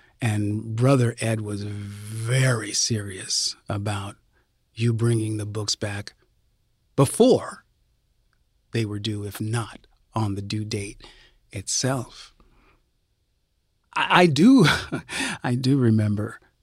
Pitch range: 110-145 Hz